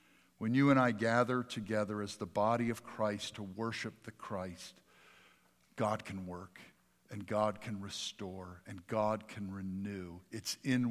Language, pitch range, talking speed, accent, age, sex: English, 100-140 Hz, 155 wpm, American, 50-69, male